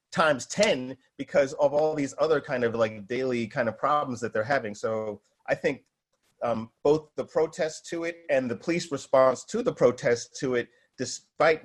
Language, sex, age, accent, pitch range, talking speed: English, male, 30-49, American, 115-160 Hz, 185 wpm